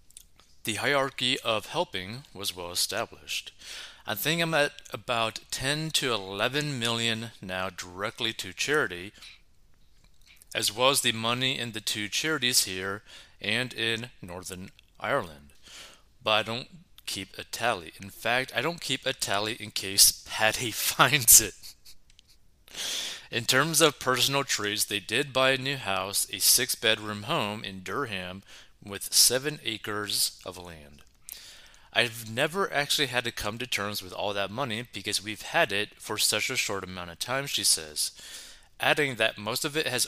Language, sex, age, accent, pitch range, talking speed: English, male, 30-49, American, 95-130 Hz, 155 wpm